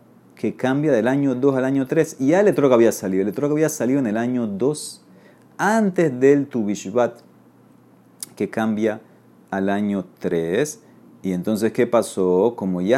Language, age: Spanish, 30-49